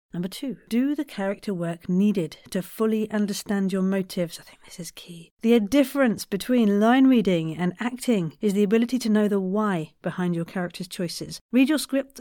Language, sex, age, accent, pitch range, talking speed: English, female, 50-69, British, 175-220 Hz, 185 wpm